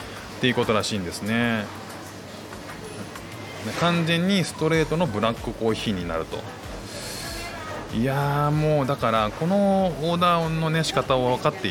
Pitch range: 95-125 Hz